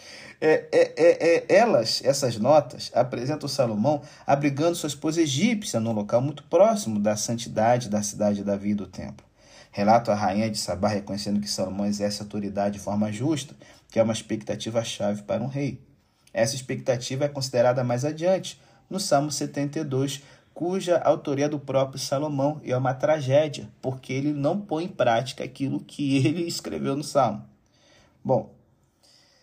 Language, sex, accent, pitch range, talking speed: Portuguese, male, Brazilian, 110-150 Hz, 160 wpm